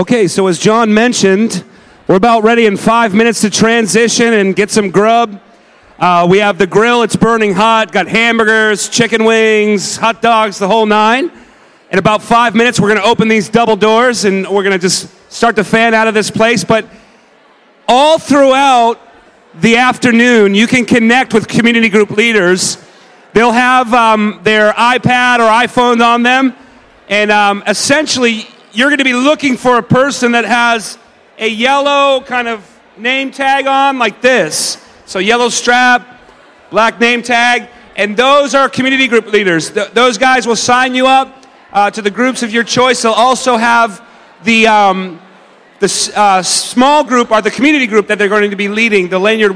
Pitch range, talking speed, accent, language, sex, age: 210-245 Hz, 175 wpm, American, English, male, 40-59